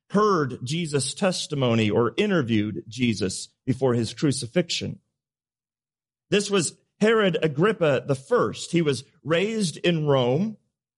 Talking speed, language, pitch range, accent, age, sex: 105 wpm, English, 125-190 Hz, American, 40-59, male